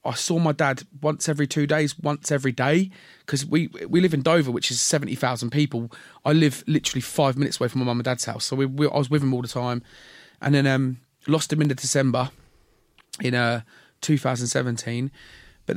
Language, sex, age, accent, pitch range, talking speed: English, male, 30-49, British, 130-160 Hz, 205 wpm